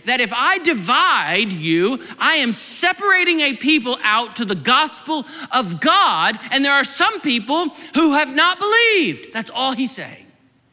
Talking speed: 160 wpm